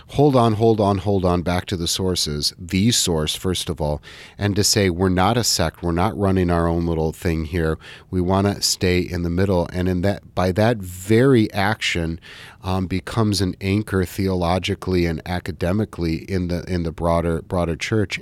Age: 40-59